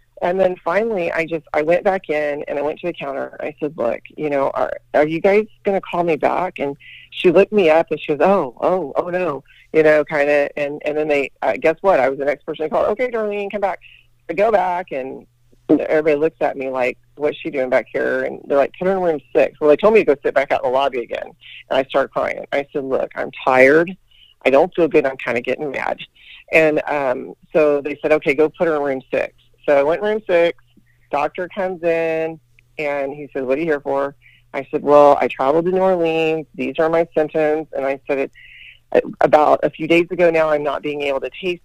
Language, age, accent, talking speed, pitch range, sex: English, 40-59, American, 250 wpm, 140-170 Hz, female